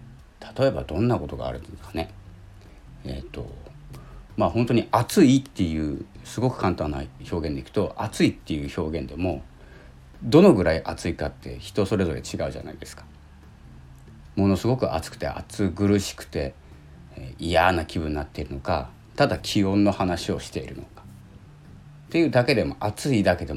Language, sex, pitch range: Japanese, male, 75-110 Hz